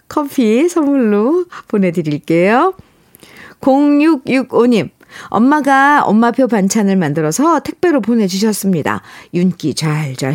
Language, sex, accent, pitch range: Korean, female, native, 185-270 Hz